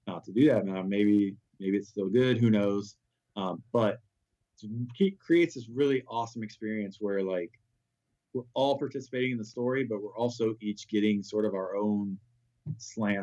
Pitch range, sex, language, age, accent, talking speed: 100-120 Hz, male, English, 30-49, American, 170 wpm